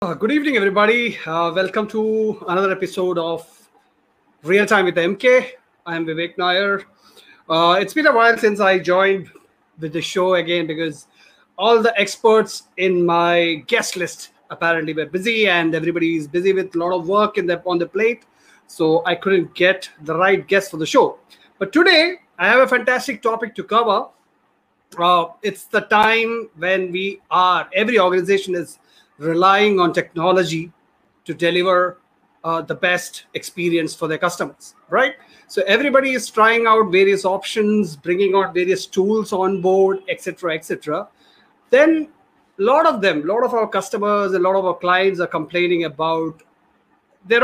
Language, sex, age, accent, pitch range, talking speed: English, male, 30-49, Indian, 170-215 Hz, 165 wpm